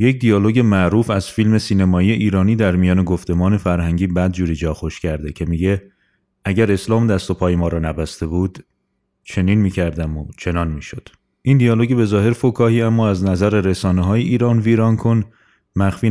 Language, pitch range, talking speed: Persian, 90-110 Hz, 170 wpm